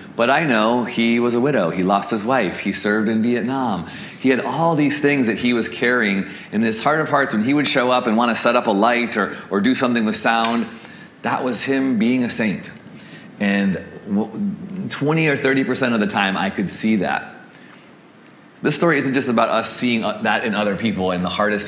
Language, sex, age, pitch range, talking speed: English, male, 30-49, 85-120 Hz, 215 wpm